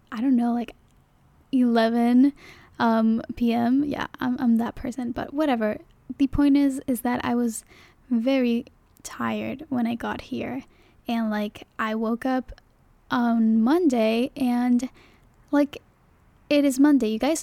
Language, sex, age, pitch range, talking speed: English, female, 10-29, 225-260 Hz, 140 wpm